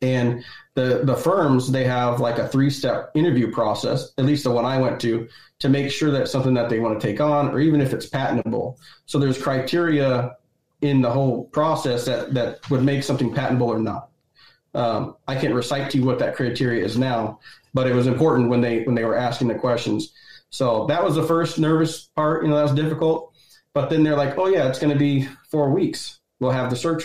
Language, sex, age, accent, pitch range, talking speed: English, male, 30-49, American, 125-145 Hz, 220 wpm